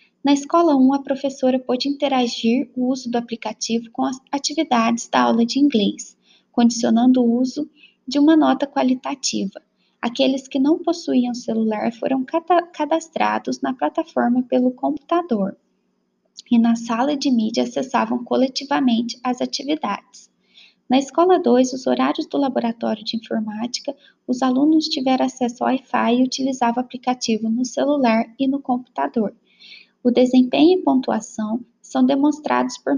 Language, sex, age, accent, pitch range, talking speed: Portuguese, female, 10-29, Brazilian, 235-285 Hz, 140 wpm